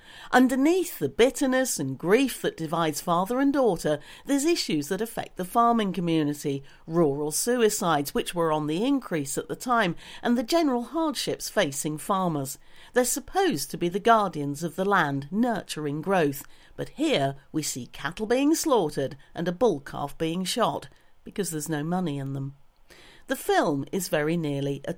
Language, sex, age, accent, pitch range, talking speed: English, female, 50-69, British, 150-225 Hz, 165 wpm